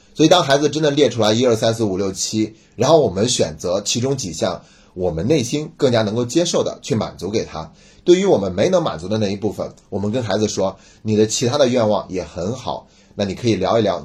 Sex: male